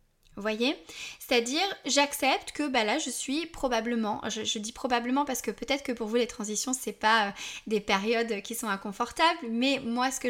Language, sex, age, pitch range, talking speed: French, female, 20-39, 225-295 Hz, 190 wpm